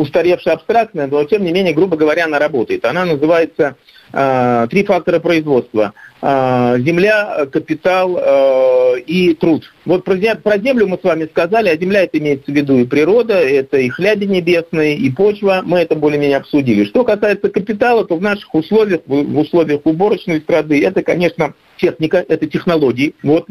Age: 50-69